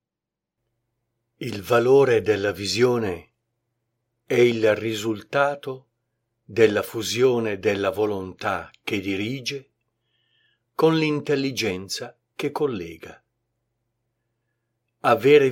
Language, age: Italian, 50-69